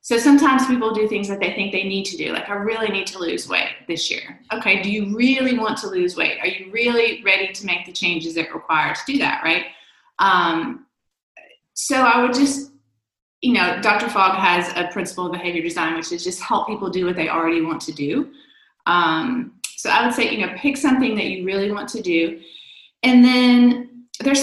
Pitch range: 180-245 Hz